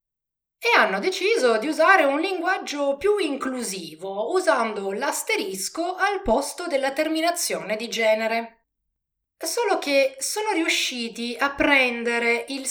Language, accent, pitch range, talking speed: Italian, native, 225-335 Hz, 115 wpm